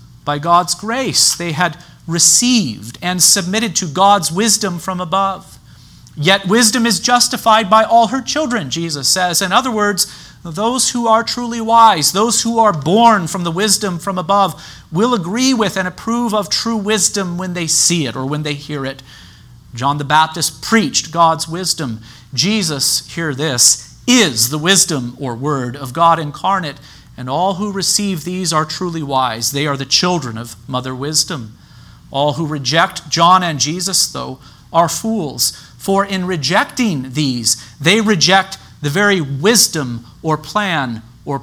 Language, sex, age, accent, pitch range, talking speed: English, male, 40-59, American, 135-195 Hz, 160 wpm